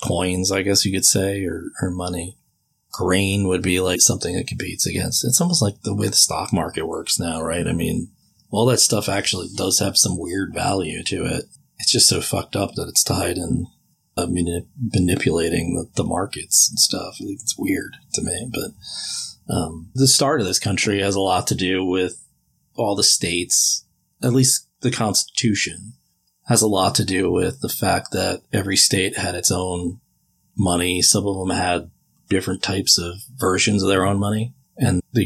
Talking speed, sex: 185 wpm, male